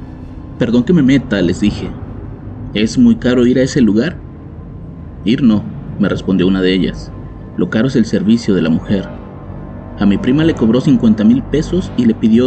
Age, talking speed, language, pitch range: 30-49, 190 wpm, Spanish, 100-125 Hz